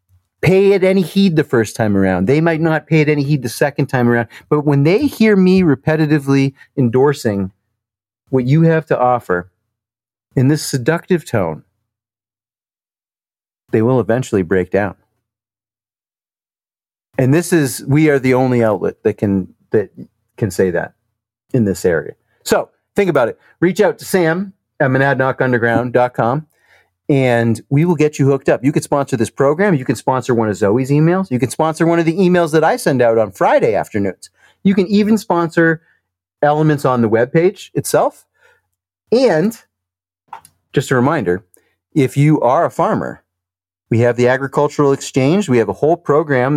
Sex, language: male, English